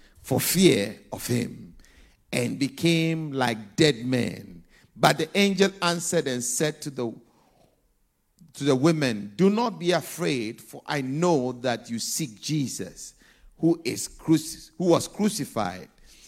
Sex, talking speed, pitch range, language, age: male, 135 wpm, 125-165 Hz, English, 50-69